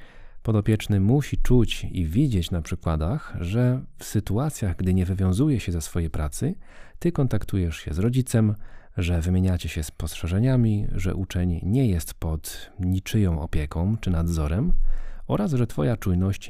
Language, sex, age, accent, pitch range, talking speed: Polish, male, 40-59, native, 85-110 Hz, 145 wpm